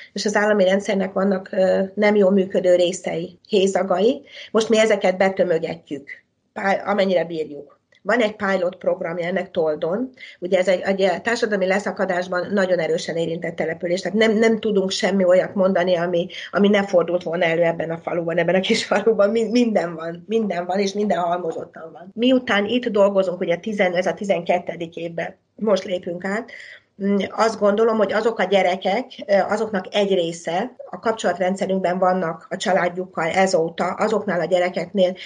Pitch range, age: 175-205 Hz, 30-49